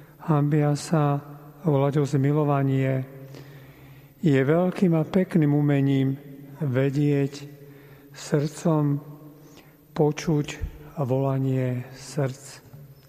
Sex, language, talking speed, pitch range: male, Slovak, 75 wpm, 140-155 Hz